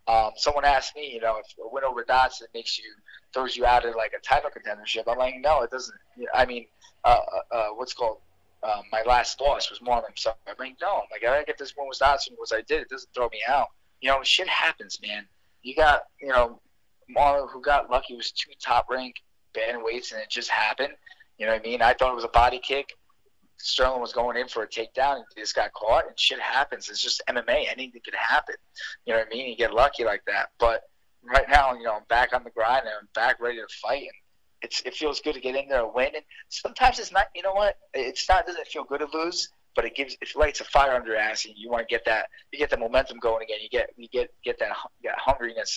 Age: 20-39